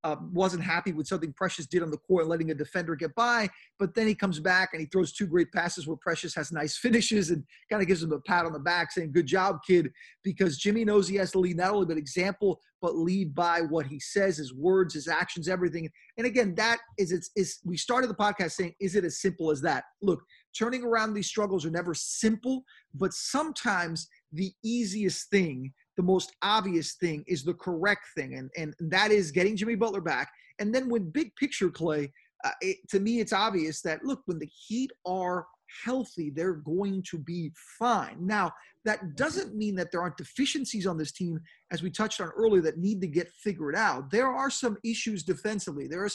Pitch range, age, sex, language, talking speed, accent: 170-215 Hz, 30-49, male, English, 215 wpm, American